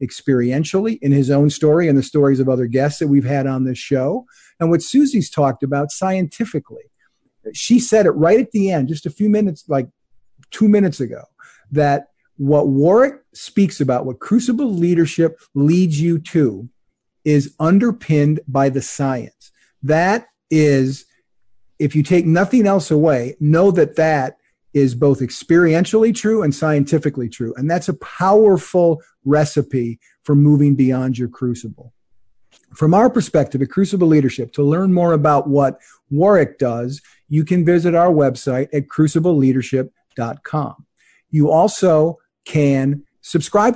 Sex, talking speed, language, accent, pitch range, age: male, 145 wpm, English, American, 135-180 Hz, 50-69